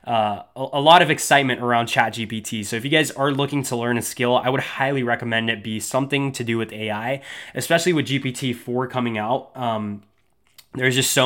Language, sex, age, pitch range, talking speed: English, male, 20-39, 115-135 Hz, 195 wpm